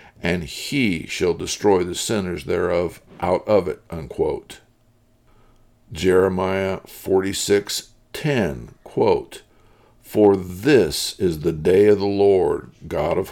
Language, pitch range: English, 95-115 Hz